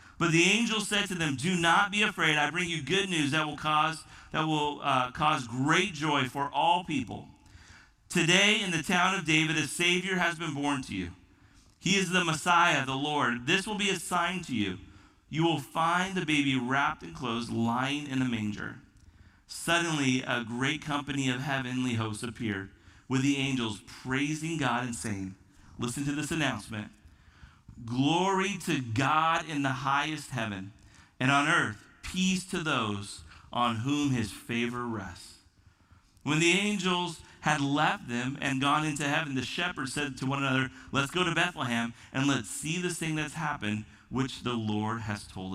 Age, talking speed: 40-59, 175 wpm